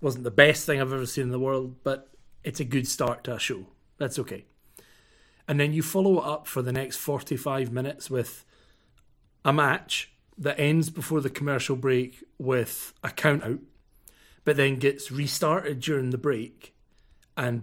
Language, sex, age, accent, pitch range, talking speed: English, male, 30-49, British, 130-160 Hz, 175 wpm